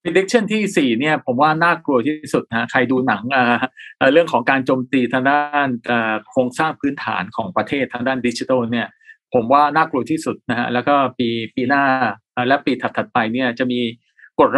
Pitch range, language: 120-155 Hz, Thai